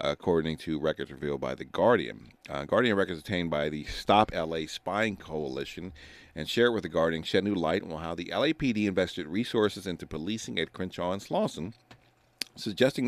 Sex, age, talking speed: male, 40-59, 175 wpm